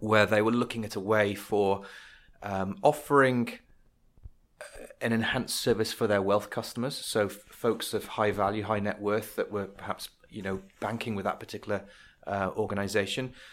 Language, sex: English, male